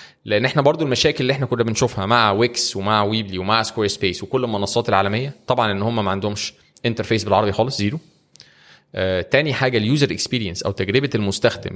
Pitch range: 100-130 Hz